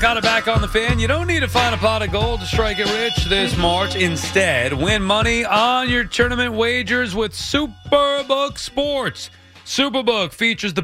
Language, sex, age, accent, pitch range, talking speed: English, male, 30-49, American, 140-225 Hz, 190 wpm